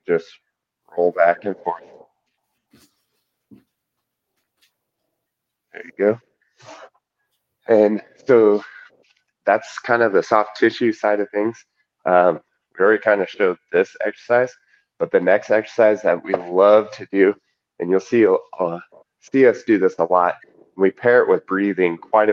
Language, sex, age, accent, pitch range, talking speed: English, male, 30-49, American, 90-115 Hz, 140 wpm